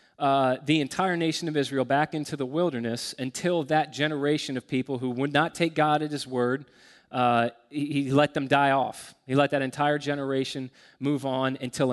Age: 30-49